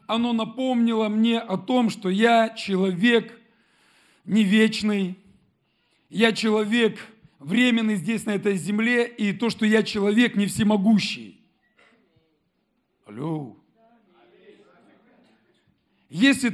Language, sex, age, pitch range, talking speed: Russian, male, 50-69, 210-240 Hz, 95 wpm